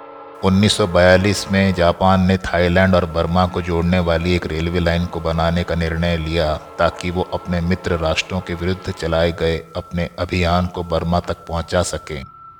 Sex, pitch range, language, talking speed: male, 85-95 Hz, Hindi, 160 wpm